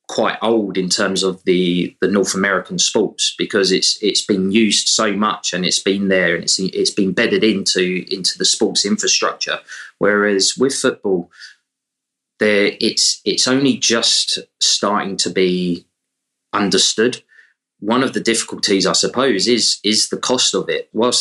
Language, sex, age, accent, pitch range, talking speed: English, male, 20-39, British, 95-110 Hz, 160 wpm